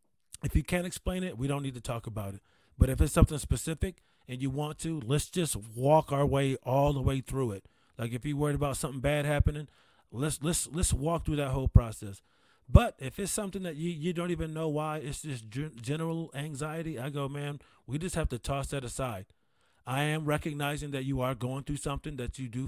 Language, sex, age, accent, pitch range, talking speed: English, male, 30-49, American, 125-155 Hz, 220 wpm